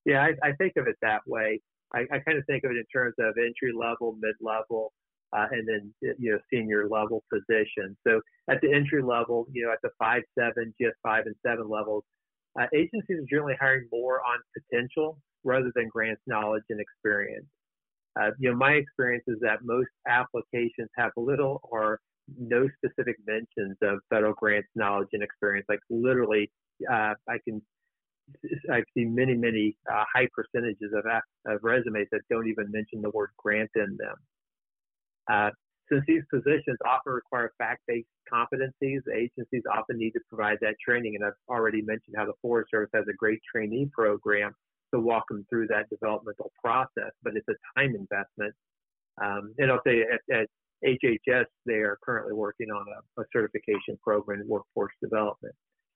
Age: 40-59